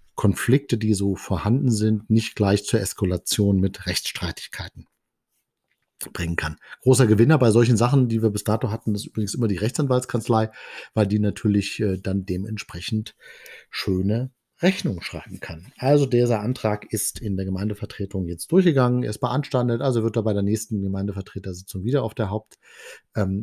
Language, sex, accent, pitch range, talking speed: German, male, German, 100-125 Hz, 155 wpm